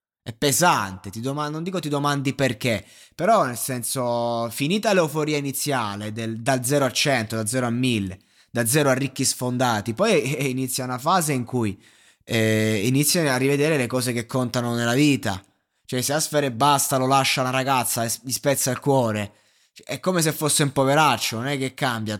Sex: male